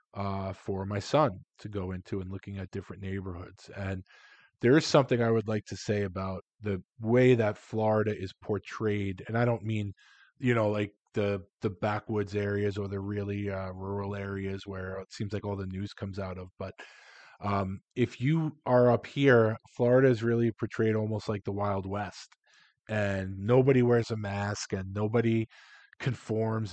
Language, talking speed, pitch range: English, 175 wpm, 100-120 Hz